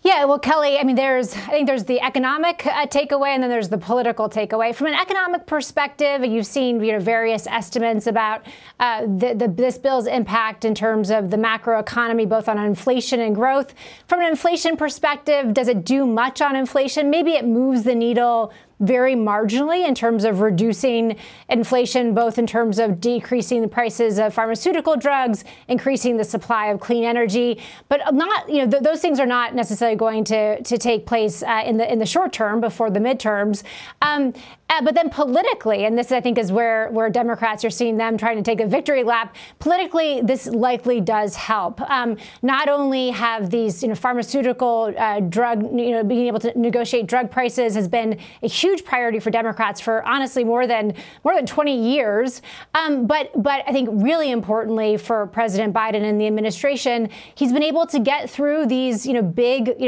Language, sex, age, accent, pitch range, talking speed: English, female, 30-49, American, 225-270 Hz, 190 wpm